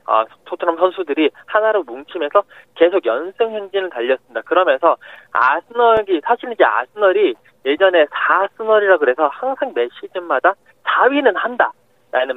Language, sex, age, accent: Korean, male, 20-39, native